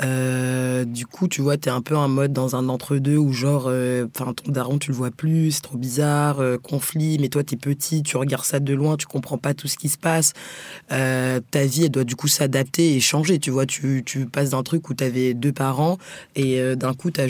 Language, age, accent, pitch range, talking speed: French, 20-39, French, 130-150 Hz, 245 wpm